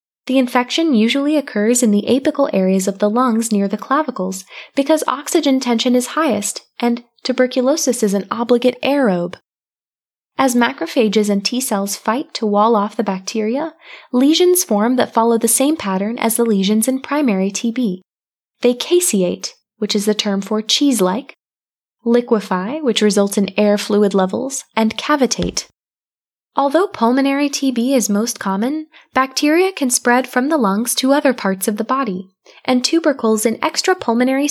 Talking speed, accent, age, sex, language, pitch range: 150 wpm, American, 20-39, female, English, 210-275 Hz